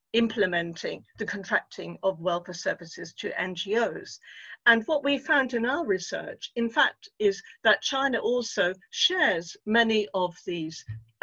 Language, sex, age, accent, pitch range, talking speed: English, female, 50-69, British, 180-230 Hz, 135 wpm